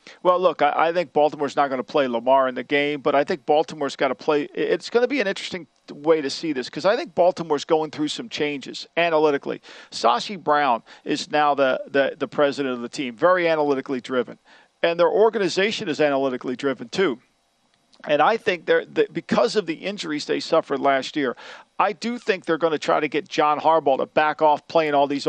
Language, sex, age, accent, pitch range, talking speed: English, male, 50-69, American, 145-185 Hz, 210 wpm